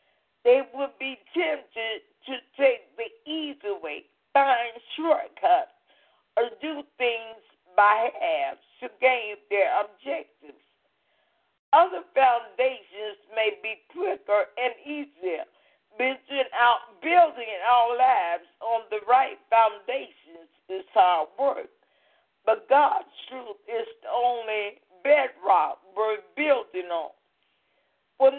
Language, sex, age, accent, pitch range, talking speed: English, female, 50-69, American, 220-295 Hz, 105 wpm